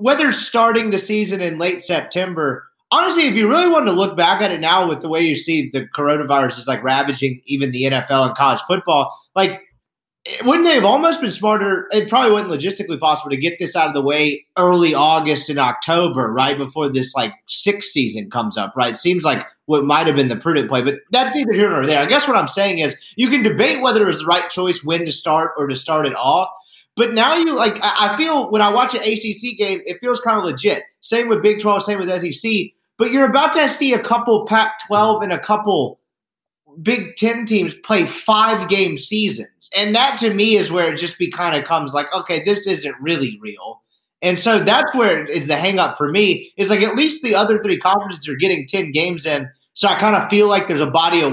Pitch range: 155-220 Hz